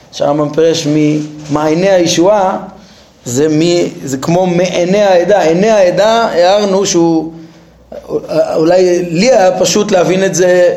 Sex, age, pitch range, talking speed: male, 30-49, 160-210 Hz, 115 wpm